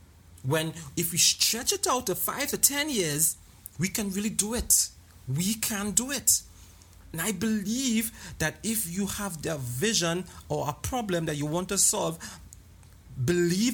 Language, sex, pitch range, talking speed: English, male, 125-175 Hz, 165 wpm